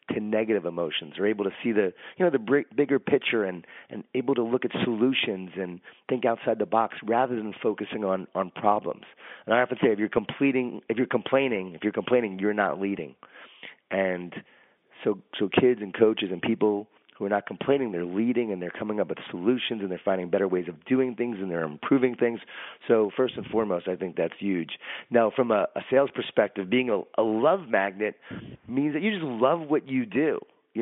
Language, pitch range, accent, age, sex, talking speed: English, 100-120 Hz, American, 30-49, male, 210 wpm